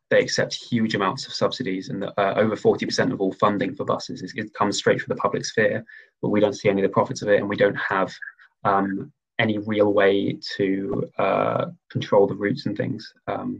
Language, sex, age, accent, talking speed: English, male, 20-39, British, 220 wpm